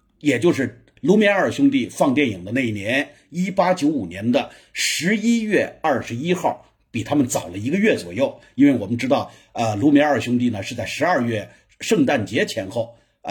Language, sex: Chinese, male